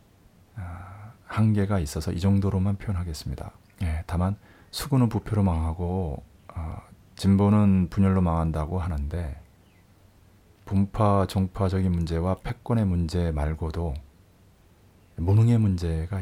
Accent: native